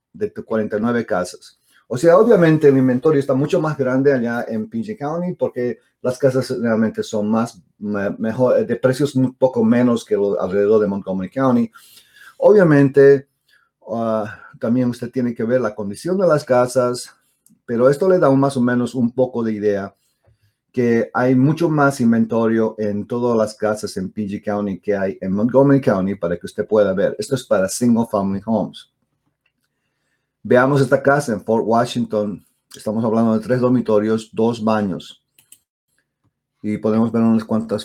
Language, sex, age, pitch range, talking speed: English, male, 40-59, 110-135 Hz, 165 wpm